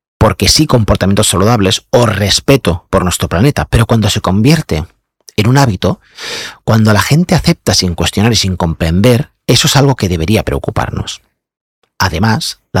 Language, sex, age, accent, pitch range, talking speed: Spanish, male, 40-59, Spanish, 90-125 Hz, 155 wpm